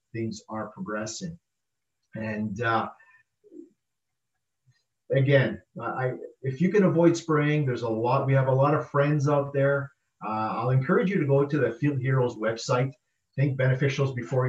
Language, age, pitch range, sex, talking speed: English, 40-59, 115-140 Hz, male, 155 wpm